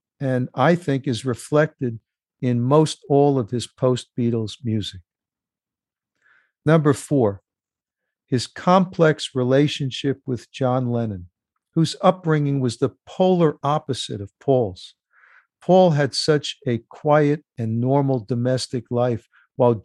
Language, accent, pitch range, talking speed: English, American, 120-150 Hz, 115 wpm